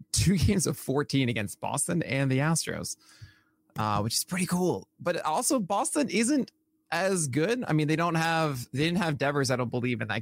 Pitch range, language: 110-135 Hz, English